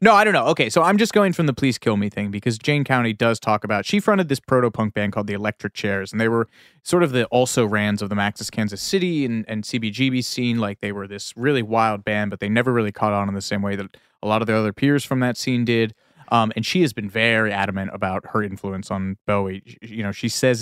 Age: 30-49